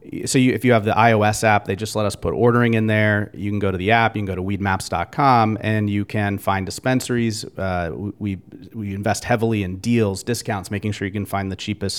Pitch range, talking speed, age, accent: 100-115 Hz, 235 wpm, 30-49, American